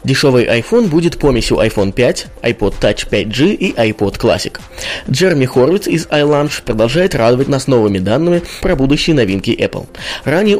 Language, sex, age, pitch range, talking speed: Russian, male, 20-39, 115-160 Hz, 145 wpm